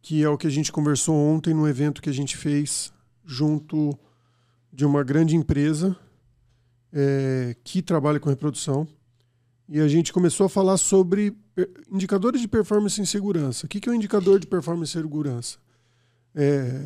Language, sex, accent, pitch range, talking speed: Portuguese, male, Brazilian, 135-190 Hz, 165 wpm